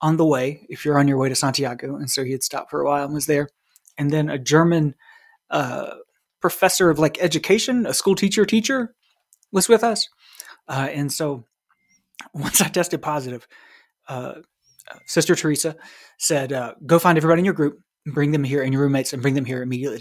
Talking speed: 200 wpm